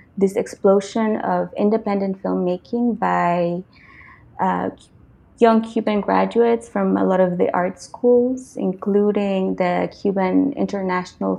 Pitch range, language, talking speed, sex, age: 165-215 Hz, English, 110 wpm, female, 20-39